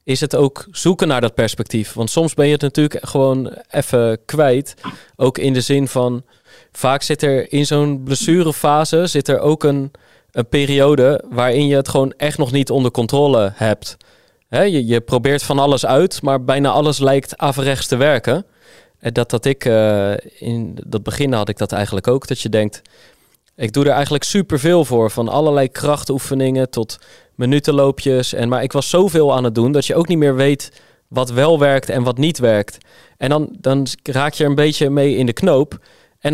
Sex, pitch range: male, 125-150 Hz